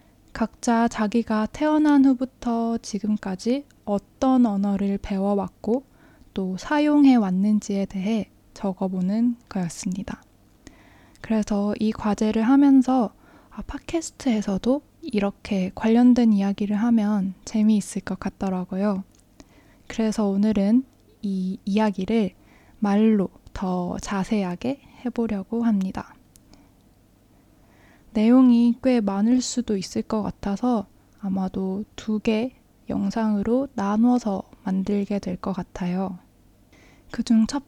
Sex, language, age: female, Korean, 20-39